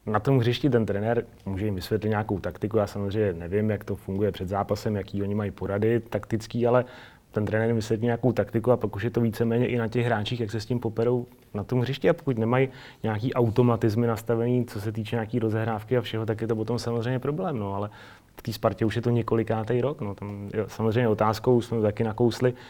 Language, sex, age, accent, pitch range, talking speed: Czech, male, 30-49, native, 105-125 Hz, 220 wpm